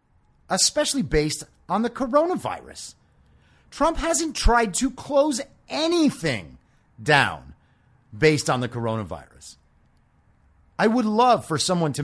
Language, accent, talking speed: English, American, 110 wpm